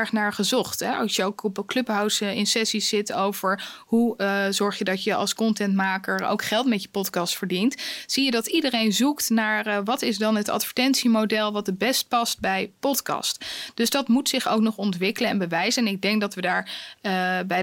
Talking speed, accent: 210 wpm, Dutch